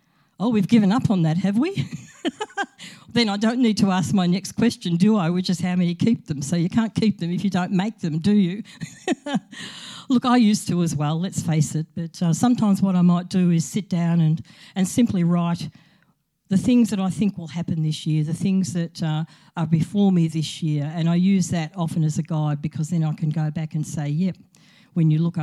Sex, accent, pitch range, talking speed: female, Australian, 165-205 Hz, 235 wpm